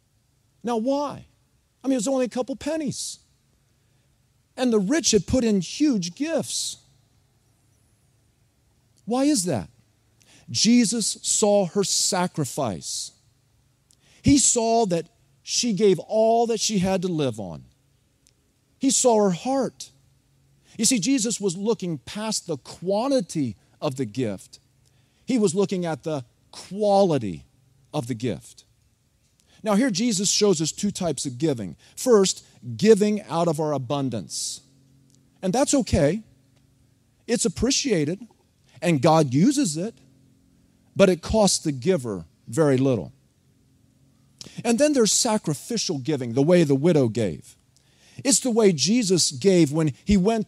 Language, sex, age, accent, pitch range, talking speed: English, male, 40-59, American, 130-215 Hz, 130 wpm